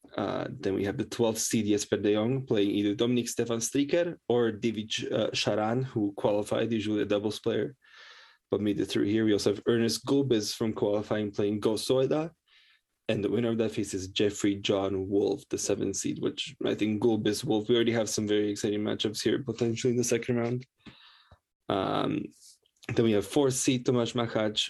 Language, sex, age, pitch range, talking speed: English, male, 20-39, 105-120 Hz, 190 wpm